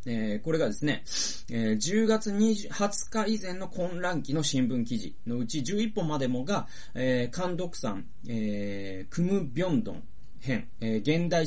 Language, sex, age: Japanese, male, 30-49